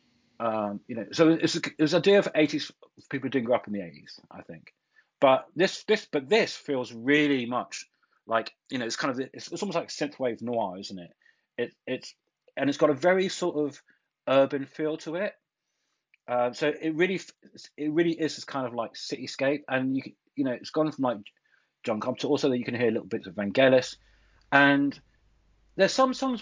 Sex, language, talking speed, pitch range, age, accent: male, English, 215 wpm, 105-145 Hz, 40-59, British